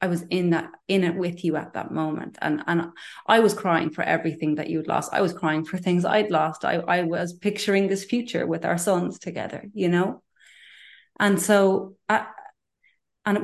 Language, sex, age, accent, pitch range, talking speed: English, female, 30-49, Irish, 160-180 Hz, 200 wpm